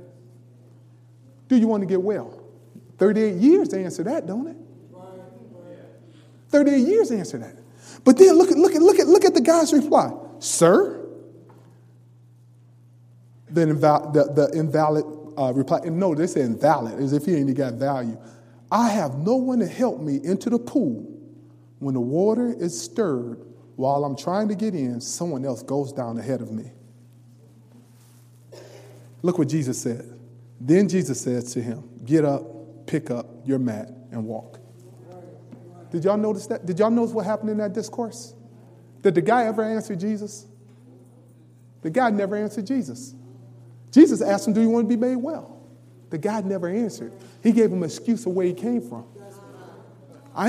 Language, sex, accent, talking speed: English, male, American, 170 wpm